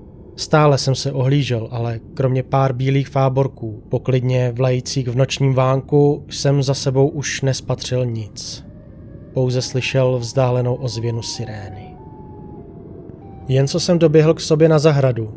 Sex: male